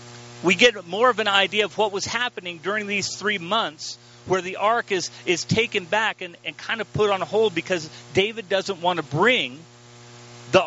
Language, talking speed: English, 195 wpm